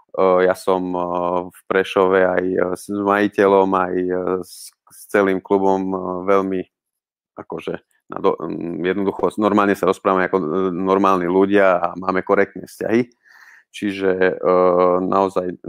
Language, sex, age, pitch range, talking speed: Slovak, male, 30-49, 85-95 Hz, 105 wpm